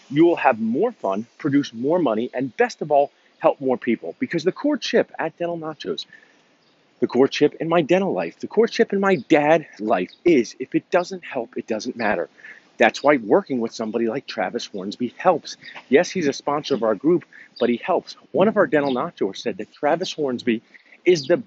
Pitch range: 130-200 Hz